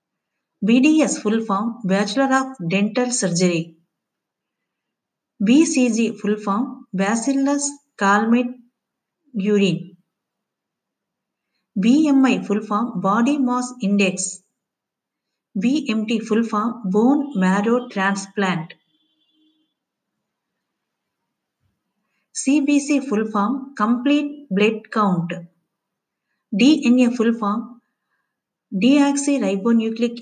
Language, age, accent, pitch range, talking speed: Telugu, 50-69, native, 195-255 Hz, 70 wpm